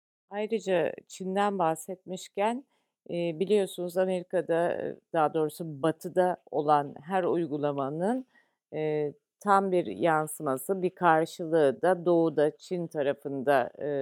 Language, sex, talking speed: Turkish, female, 85 wpm